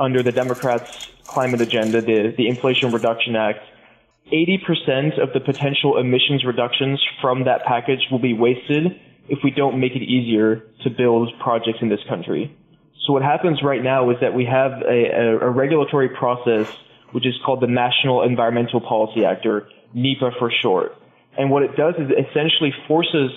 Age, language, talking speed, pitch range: 20-39, English, 170 wpm, 125-140 Hz